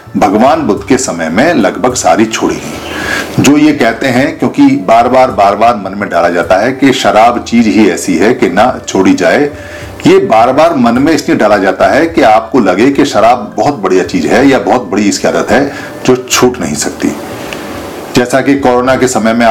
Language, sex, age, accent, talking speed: Hindi, male, 50-69, native, 205 wpm